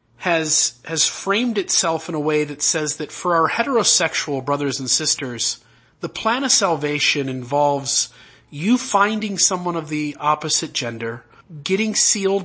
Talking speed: 145 wpm